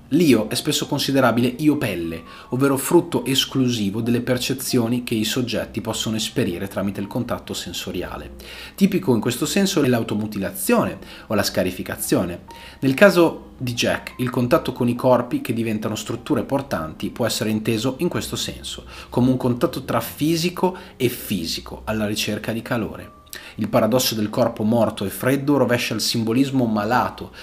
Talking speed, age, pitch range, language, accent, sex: 150 wpm, 30-49, 105-130 Hz, Italian, native, male